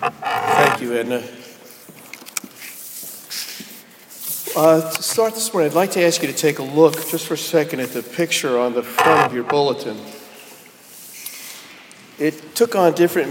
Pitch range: 120-145 Hz